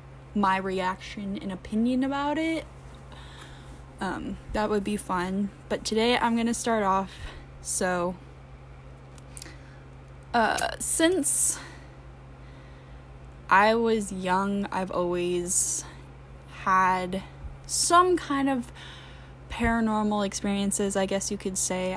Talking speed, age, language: 100 wpm, 10-29, English